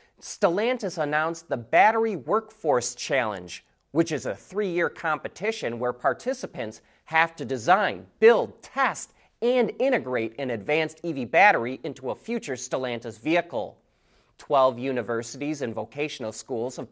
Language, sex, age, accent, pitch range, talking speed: English, male, 30-49, American, 125-185 Hz, 125 wpm